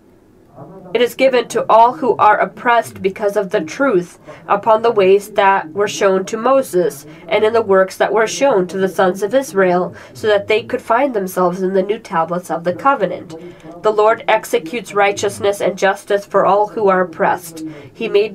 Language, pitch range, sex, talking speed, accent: English, 165-215 Hz, female, 190 wpm, American